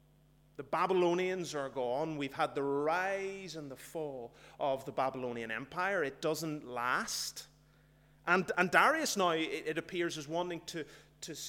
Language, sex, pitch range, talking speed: English, male, 140-170 Hz, 145 wpm